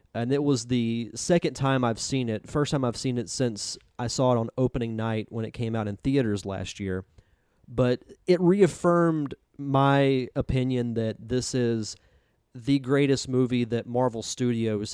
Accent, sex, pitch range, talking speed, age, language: American, male, 110-135 Hz, 175 wpm, 30-49, English